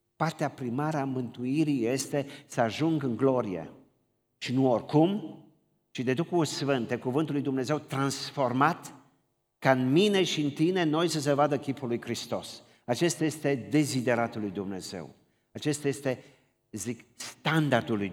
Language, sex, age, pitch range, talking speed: Romanian, male, 50-69, 115-155 Hz, 145 wpm